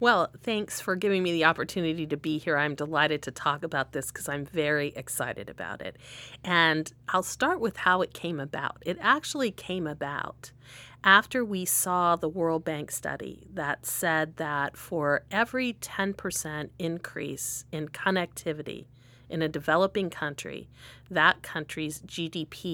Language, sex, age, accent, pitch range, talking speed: English, female, 40-59, American, 135-170 Hz, 150 wpm